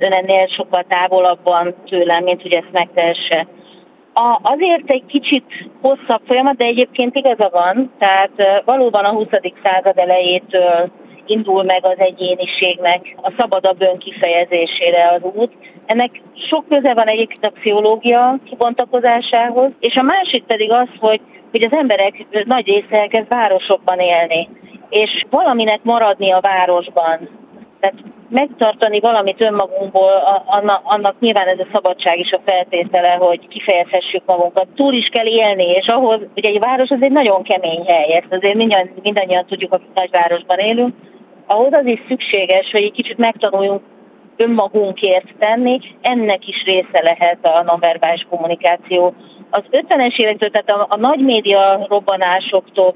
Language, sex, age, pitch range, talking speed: Hungarian, female, 40-59, 180-230 Hz, 140 wpm